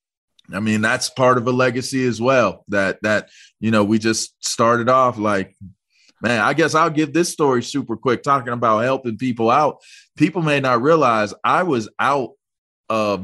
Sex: male